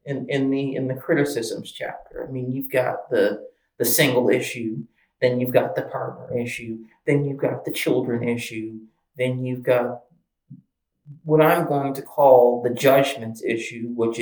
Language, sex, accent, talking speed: English, male, American, 165 wpm